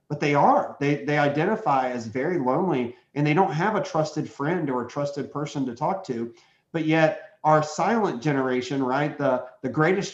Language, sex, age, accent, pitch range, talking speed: English, male, 40-59, American, 125-155 Hz, 190 wpm